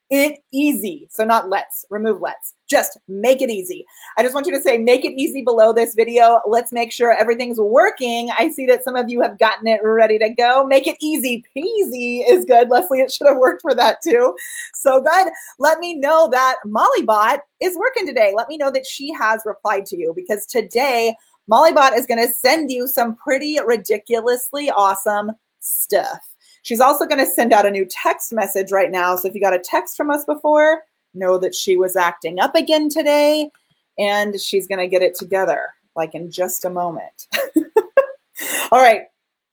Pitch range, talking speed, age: 210-300 Hz, 195 wpm, 30-49